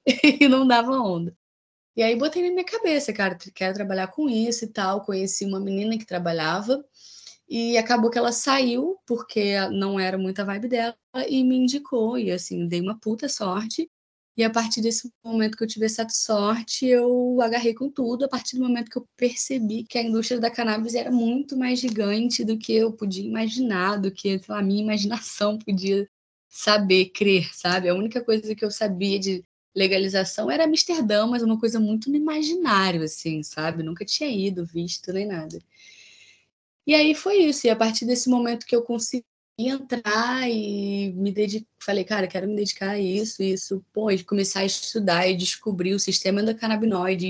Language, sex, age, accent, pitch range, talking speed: Portuguese, female, 20-39, Brazilian, 195-240 Hz, 185 wpm